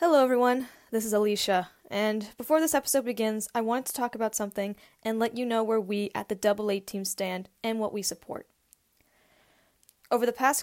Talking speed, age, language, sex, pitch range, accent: 190 wpm, 10-29, English, female, 190-225 Hz, American